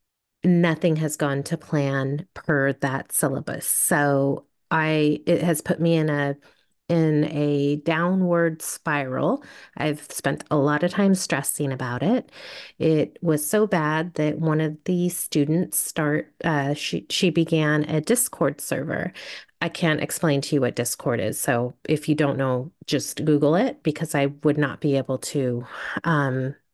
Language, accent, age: English, American, 30-49